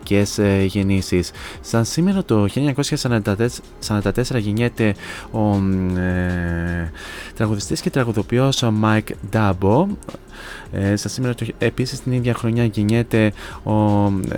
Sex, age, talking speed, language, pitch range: male, 20-39, 100 wpm, Greek, 100-120 Hz